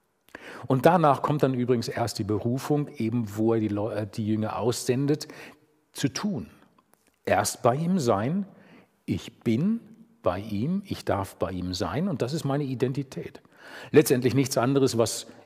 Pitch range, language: 115-150 Hz, German